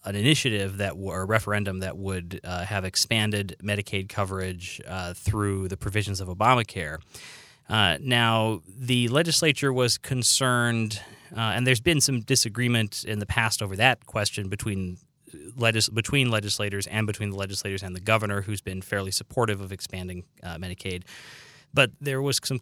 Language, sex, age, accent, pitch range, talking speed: English, male, 30-49, American, 95-115 Hz, 155 wpm